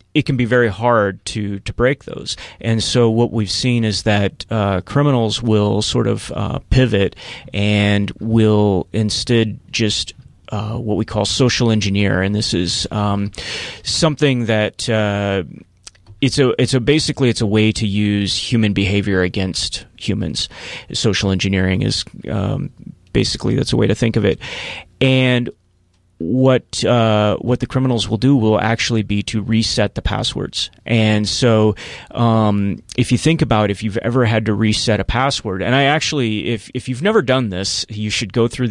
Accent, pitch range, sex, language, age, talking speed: American, 100-120 Hz, male, English, 30-49, 170 wpm